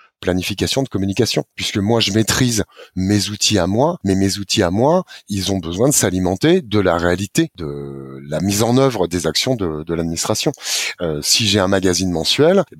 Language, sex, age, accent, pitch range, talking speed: French, male, 30-49, French, 95-115 Hz, 190 wpm